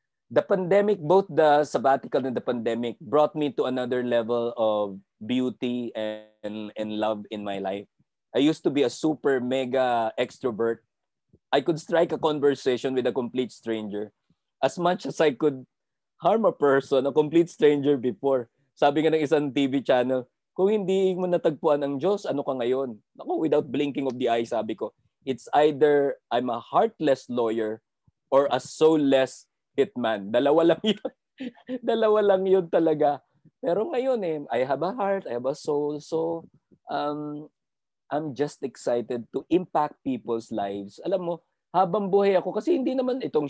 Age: 20-39